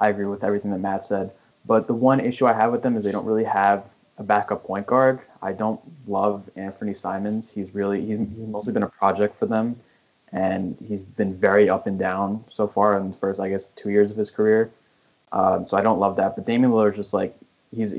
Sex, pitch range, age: male, 100-120 Hz, 20-39